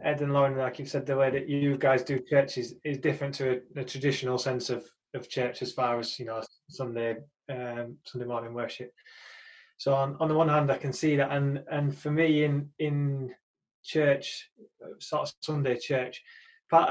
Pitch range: 130-150 Hz